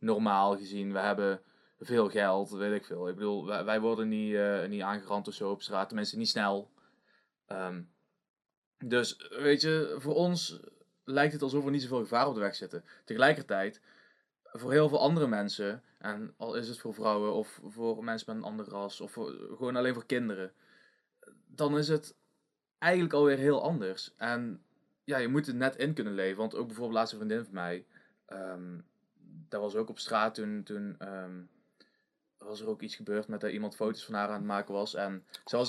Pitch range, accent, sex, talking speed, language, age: 100-130 Hz, Dutch, male, 195 wpm, Dutch, 20-39